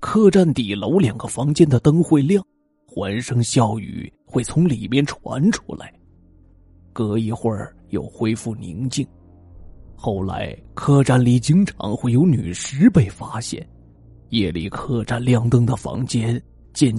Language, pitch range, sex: Chinese, 105-150 Hz, male